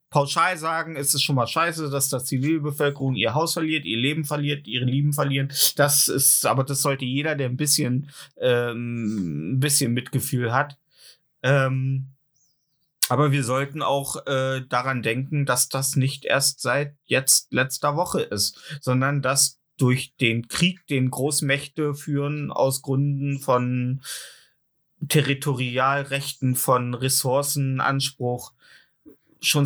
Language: German